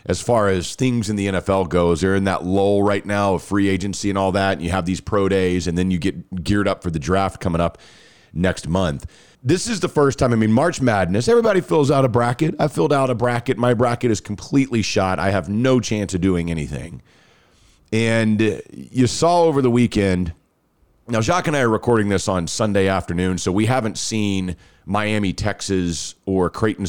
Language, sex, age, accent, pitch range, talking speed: English, male, 40-59, American, 95-125 Hz, 210 wpm